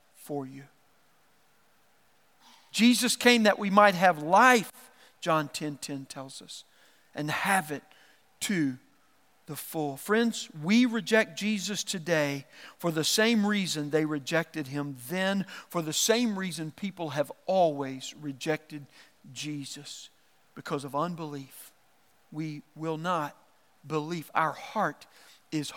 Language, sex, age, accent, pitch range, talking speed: English, male, 50-69, American, 150-195 Hz, 120 wpm